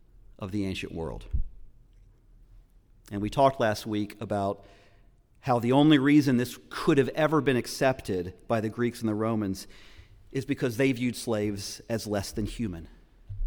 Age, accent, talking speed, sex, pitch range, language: 40-59, American, 155 wpm, male, 110-155 Hz, English